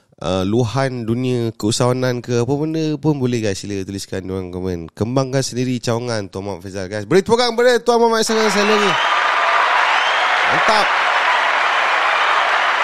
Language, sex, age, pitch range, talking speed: Malay, male, 30-49, 100-140 Hz, 120 wpm